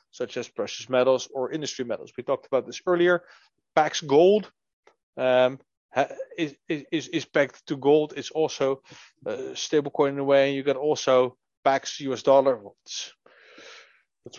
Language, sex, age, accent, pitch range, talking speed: English, male, 30-49, Dutch, 130-195 Hz, 160 wpm